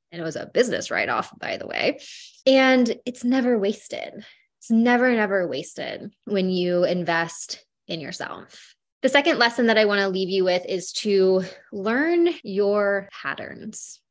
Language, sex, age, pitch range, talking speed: English, female, 20-39, 180-230 Hz, 155 wpm